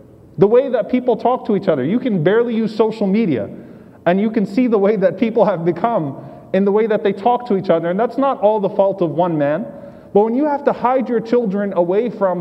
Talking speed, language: 250 wpm, English